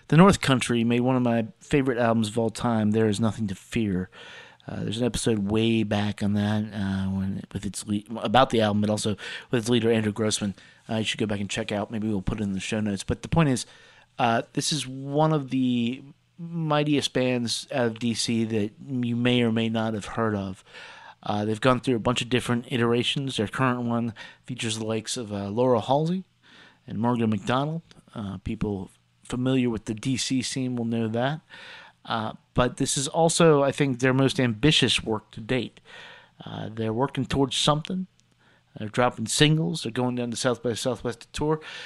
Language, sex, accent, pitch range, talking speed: English, male, American, 110-130 Hz, 205 wpm